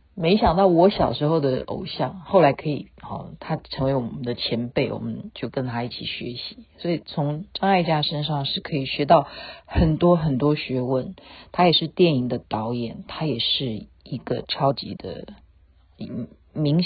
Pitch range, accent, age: 140-185 Hz, native, 50-69